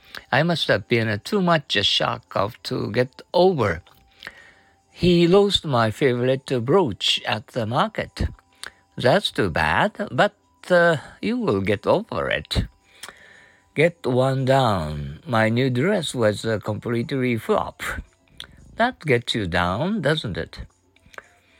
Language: Japanese